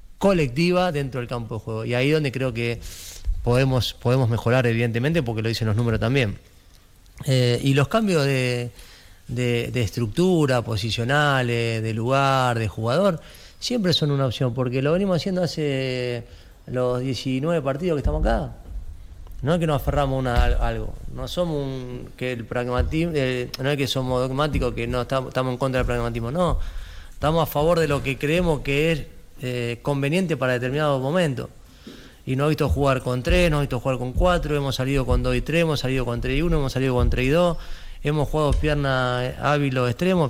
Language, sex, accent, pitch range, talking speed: Spanish, male, Argentinian, 120-150 Hz, 190 wpm